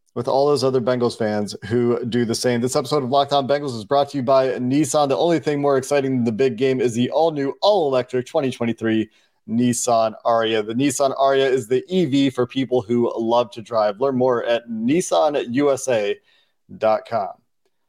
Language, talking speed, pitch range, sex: English, 180 wpm, 115-145 Hz, male